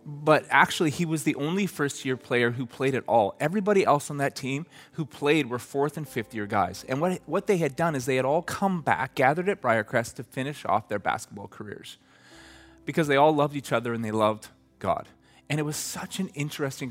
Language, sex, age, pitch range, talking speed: English, male, 30-49, 115-145 Hz, 215 wpm